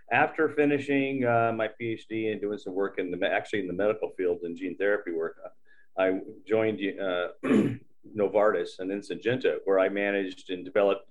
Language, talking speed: English, 180 wpm